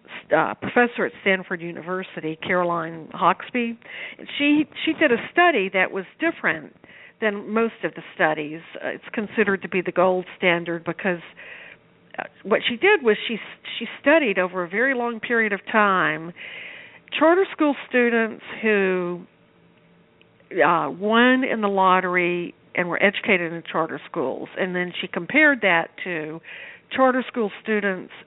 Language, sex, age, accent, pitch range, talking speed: English, female, 50-69, American, 175-225 Hz, 145 wpm